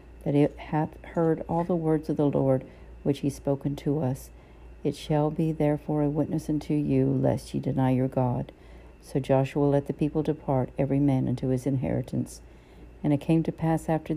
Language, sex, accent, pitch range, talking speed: English, female, American, 130-145 Hz, 190 wpm